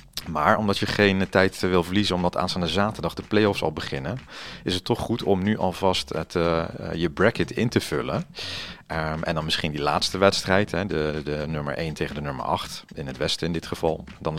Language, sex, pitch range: Dutch, male, 80-105 Hz